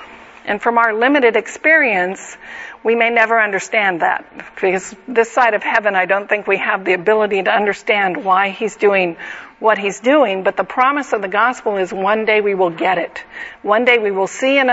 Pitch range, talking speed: 205-250 Hz, 200 wpm